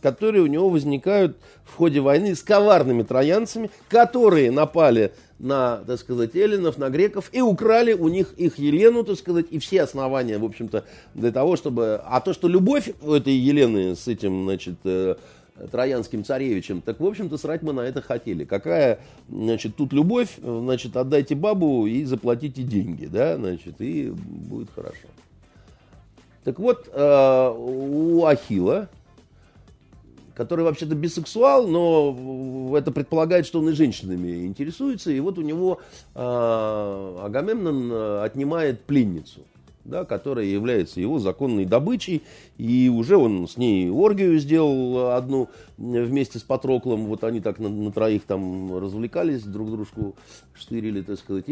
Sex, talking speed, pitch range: male, 140 wpm, 110-165 Hz